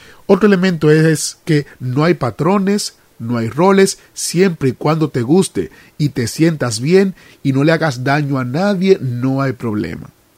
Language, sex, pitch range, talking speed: Spanish, male, 130-175 Hz, 170 wpm